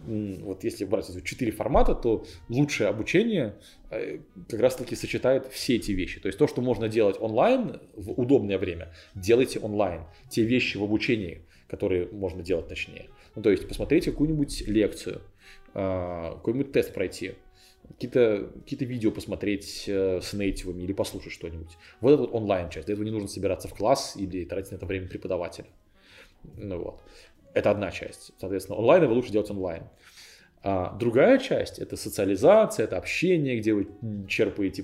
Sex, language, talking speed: male, Russian, 155 wpm